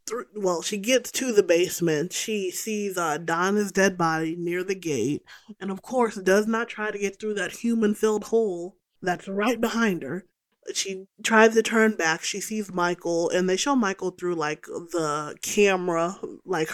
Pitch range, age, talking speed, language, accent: 170-215 Hz, 20-39, 175 wpm, English, American